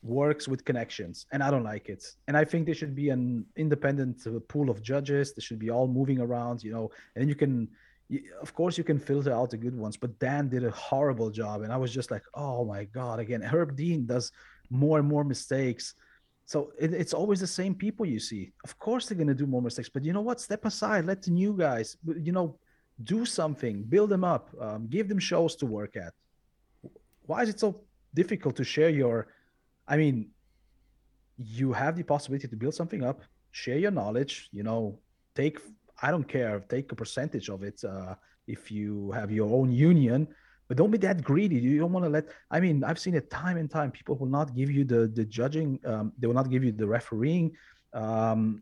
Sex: male